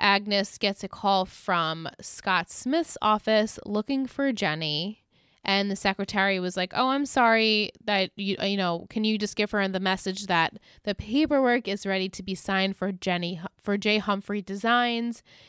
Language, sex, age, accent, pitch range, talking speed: English, female, 20-39, American, 180-215 Hz, 170 wpm